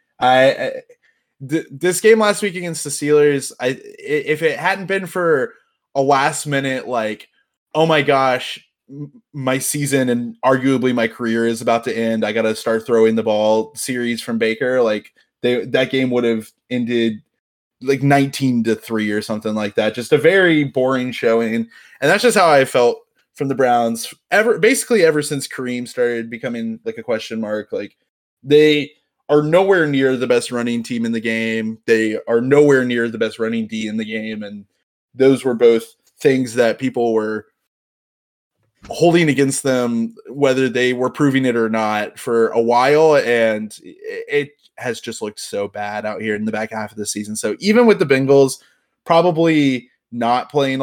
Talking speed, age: 175 wpm, 20-39